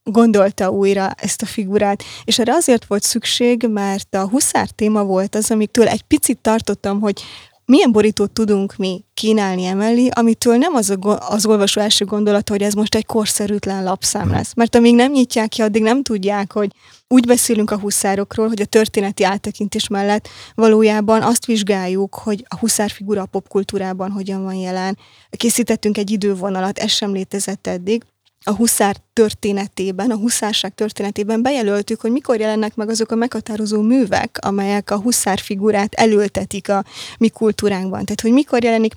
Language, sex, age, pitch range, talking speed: Hungarian, female, 20-39, 200-225 Hz, 165 wpm